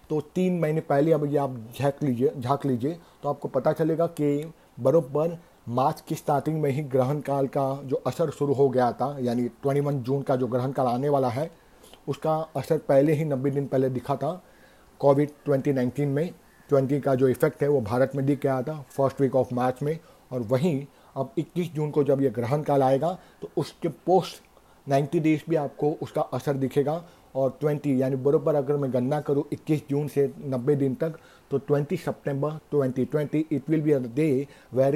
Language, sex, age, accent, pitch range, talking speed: Hindi, male, 50-69, native, 135-150 Hz, 195 wpm